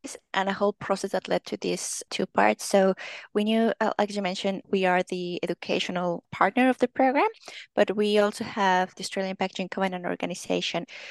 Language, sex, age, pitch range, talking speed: English, female, 20-39, 175-220 Hz, 180 wpm